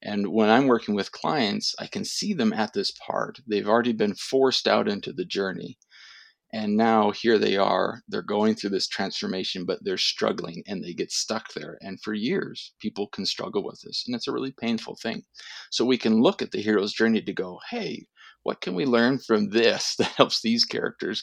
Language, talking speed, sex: English, 210 wpm, male